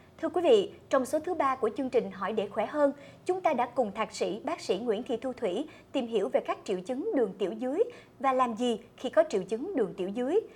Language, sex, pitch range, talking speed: Vietnamese, male, 225-320 Hz, 255 wpm